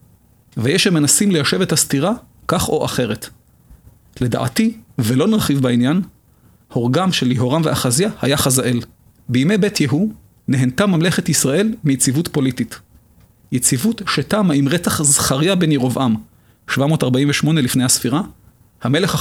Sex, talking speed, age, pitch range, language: male, 120 wpm, 40-59, 125-170 Hz, Hebrew